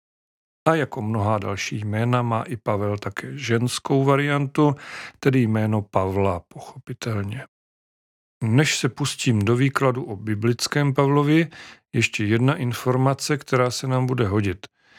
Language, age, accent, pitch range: Czech, 40-59, native, 110-140 Hz